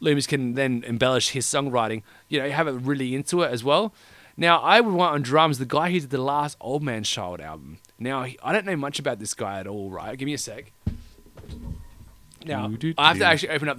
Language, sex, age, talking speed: English, male, 30-49, 235 wpm